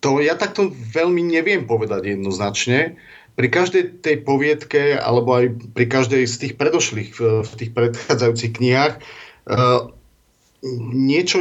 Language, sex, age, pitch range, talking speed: Slovak, male, 40-59, 115-140 Hz, 120 wpm